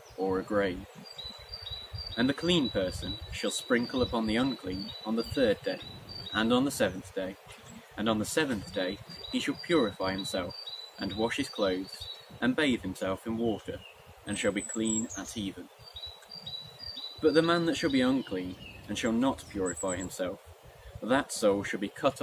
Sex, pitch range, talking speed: male, 95-120 Hz, 165 wpm